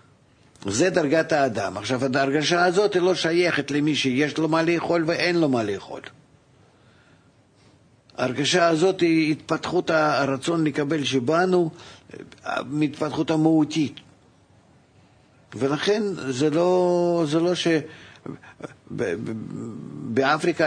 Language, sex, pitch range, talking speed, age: Hebrew, male, 125-160 Hz, 100 wpm, 50-69